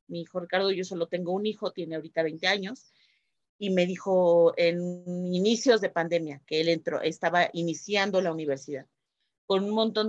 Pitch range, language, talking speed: 185-230 Hz, Spanish, 170 wpm